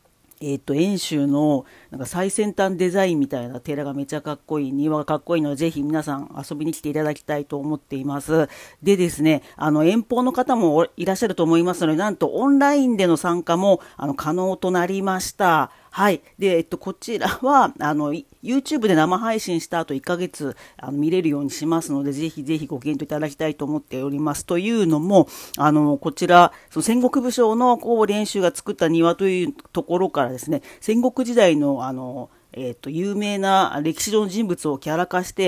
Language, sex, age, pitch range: Japanese, female, 40-59, 150-200 Hz